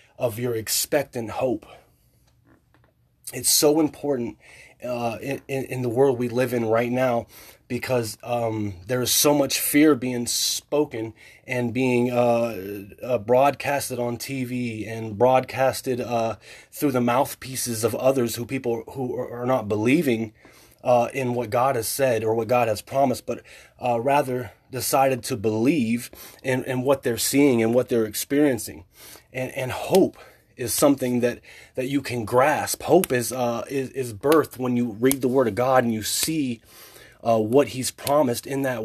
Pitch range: 115-135 Hz